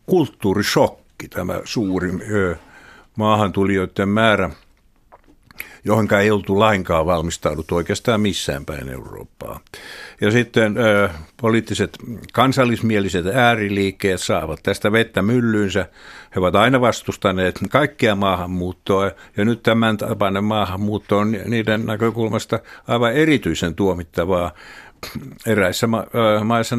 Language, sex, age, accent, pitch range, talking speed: Finnish, male, 60-79, native, 90-115 Hz, 95 wpm